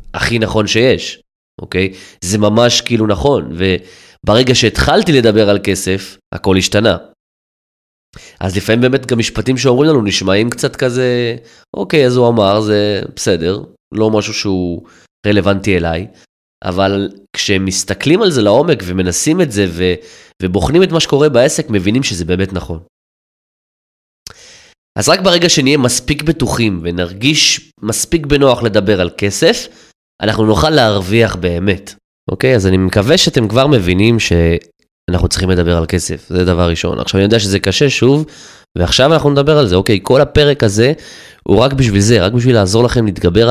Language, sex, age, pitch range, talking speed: Hebrew, male, 20-39, 95-125 Hz, 150 wpm